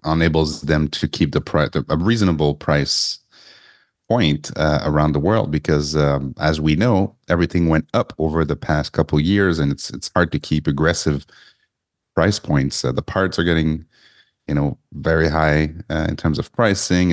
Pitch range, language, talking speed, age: 75-85 Hz, English, 180 wpm, 30-49